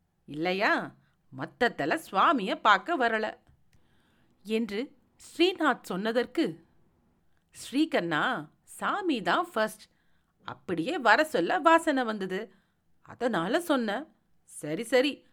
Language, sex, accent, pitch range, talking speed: Tamil, female, native, 175-280 Hz, 80 wpm